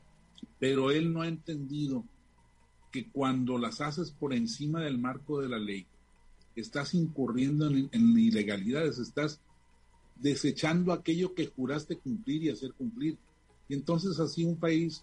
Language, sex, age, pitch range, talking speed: Spanish, male, 40-59, 130-170 Hz, 145 wpm